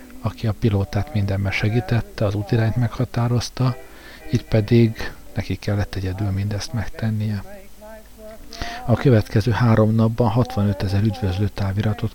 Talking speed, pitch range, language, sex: 115 wpm, 105-125 Hz, Hungarian, male